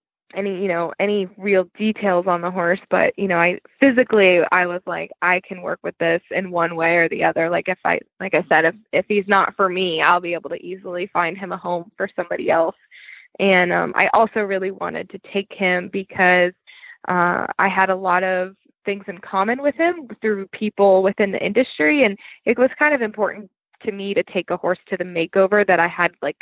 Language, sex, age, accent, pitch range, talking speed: English, female, 20-39, American, 180-215 Hz, 220 wpm